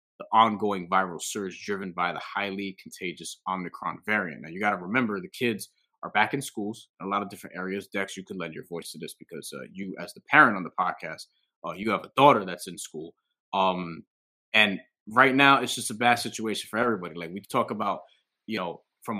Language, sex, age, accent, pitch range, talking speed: English, male, 30-49, American, 100-140 Hz, 220 wpm